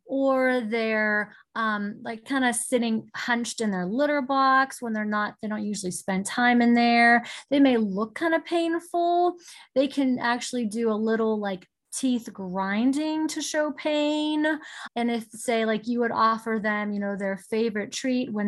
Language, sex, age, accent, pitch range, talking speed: English, female, 20-39, American, 210-245 Hz, 175 wpm